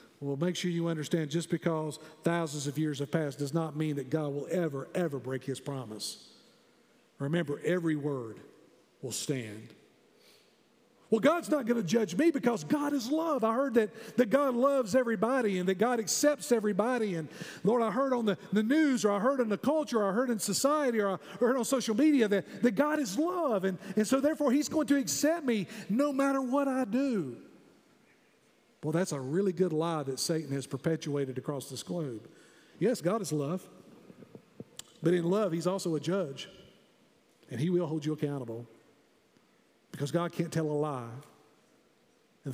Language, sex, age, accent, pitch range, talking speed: English, male, 50-69, American, 150-235 Hz, 185 wpm